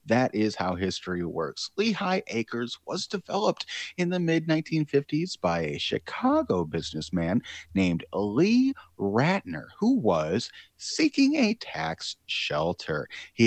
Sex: male